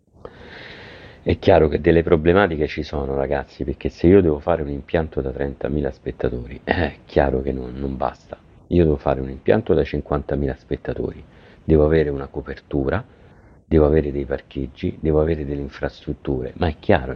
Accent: native